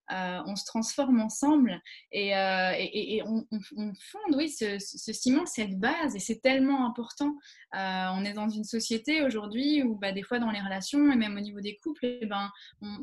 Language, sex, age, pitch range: French, female, 20-39, 200-265 Hz